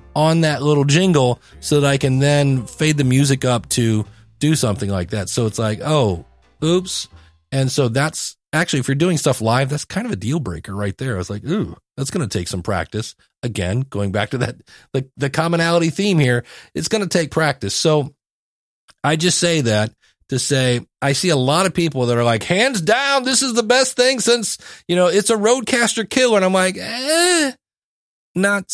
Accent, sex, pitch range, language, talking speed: American, male, 120-165 Hz, English, 210 wpm